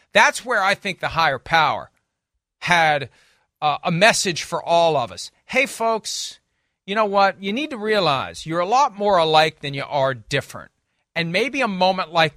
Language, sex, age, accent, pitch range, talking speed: English, male, 40-59, American, 120-170 Hz, 185 wpm